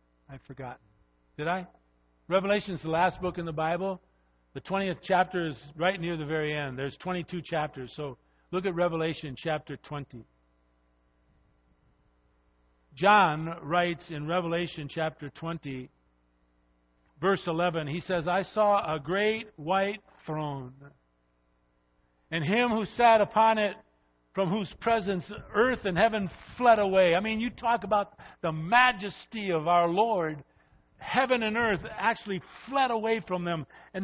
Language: English